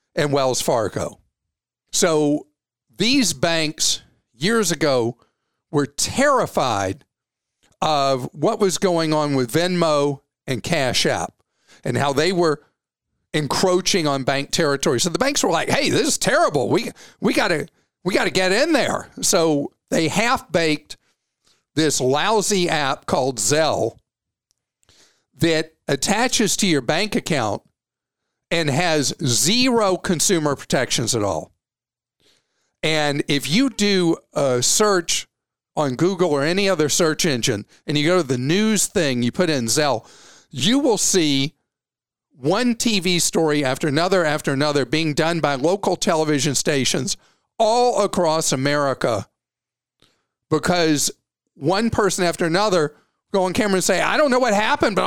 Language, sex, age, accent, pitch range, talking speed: English, male, 50-69, American, 140-190 Hz, 140 wpm